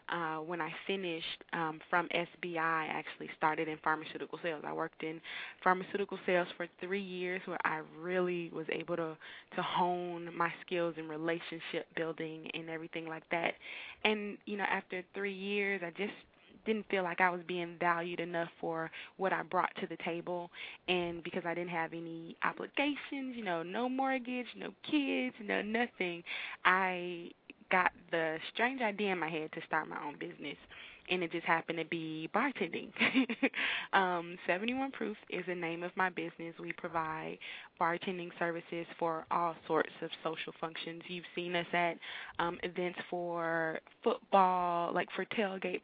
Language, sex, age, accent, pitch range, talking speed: English, female, 20-39, American, 165-190 Hz, 165 wpm